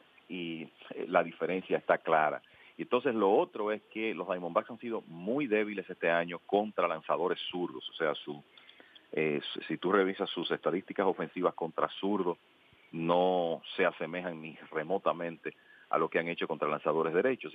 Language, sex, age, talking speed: English, male, 40-59, 155 wpm